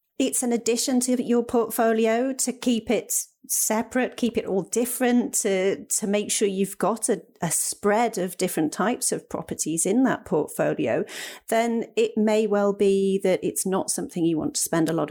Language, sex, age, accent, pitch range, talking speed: English, female, 40-59, British, 170-230 Hz, 185 wpm